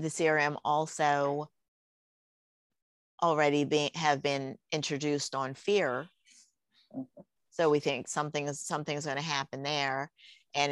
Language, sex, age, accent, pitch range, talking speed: English, female, 50-69, American, 130-145 Hz, 105 wpm